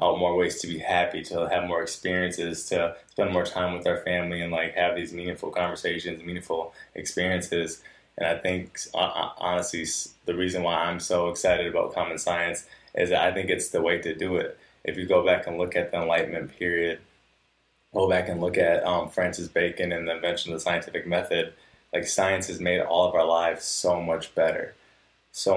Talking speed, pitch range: 200 wpm, 85-90 Hz